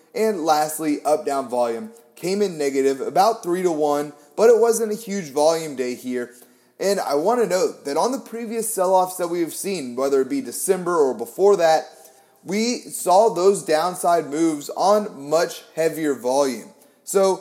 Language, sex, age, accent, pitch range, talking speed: English, male, 30-49, American, 140-190 Hz, 170 wpm